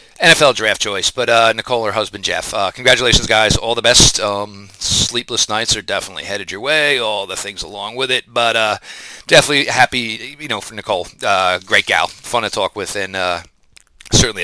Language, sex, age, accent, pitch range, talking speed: English, male, 40-59, American, 115-150 Hz, 195 wpm